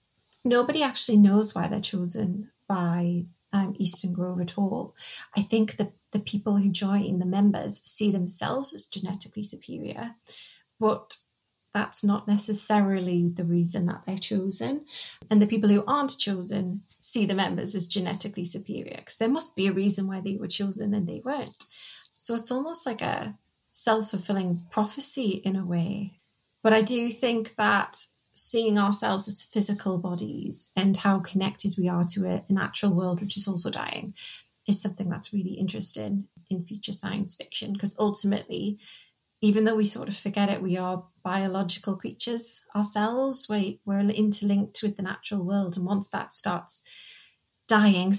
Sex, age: female, 30-49